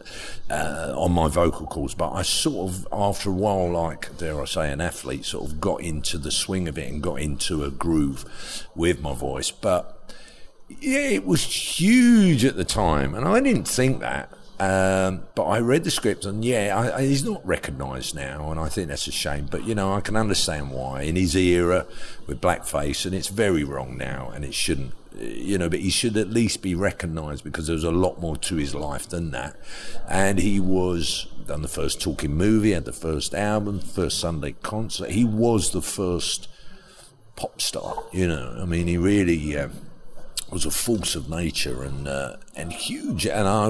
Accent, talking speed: British, 200 wpm